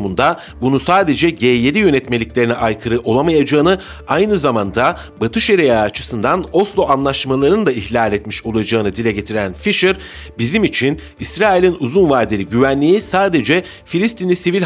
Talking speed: 120 wpm